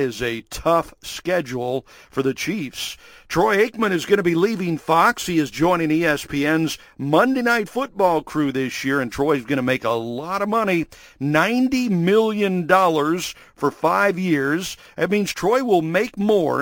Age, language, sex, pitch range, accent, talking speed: 50-69, English, male, 140-190 Hz, American, 165 wpm